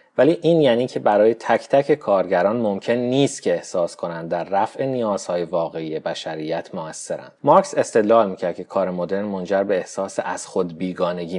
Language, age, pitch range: Persian, 30-49, 95-125 Hz